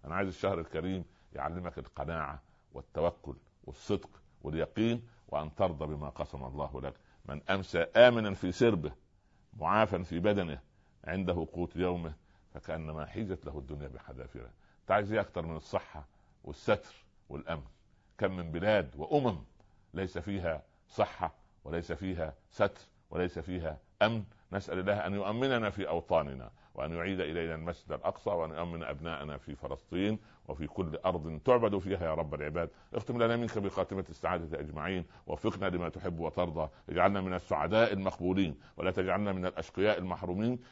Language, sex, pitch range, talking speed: English, male, 75-95 Hz, 135 wpm